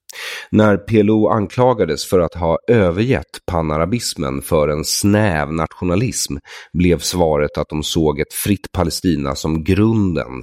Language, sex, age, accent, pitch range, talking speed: English, male, 30-49, Swedish, 75-100 Hz, 125 wpm